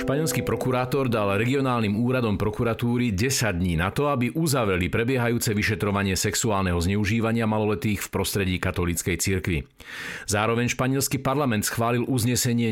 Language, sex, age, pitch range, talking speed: Slovak, male, 50-69, 95-120 Hz, 125 wpm